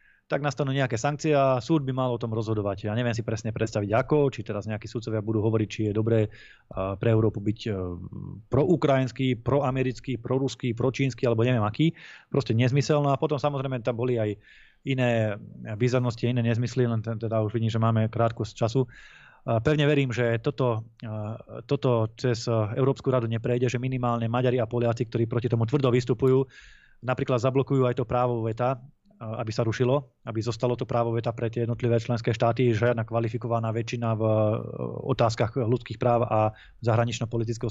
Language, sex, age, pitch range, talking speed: Slovak, male, 20-39, 115-130 Hz, 175 wpm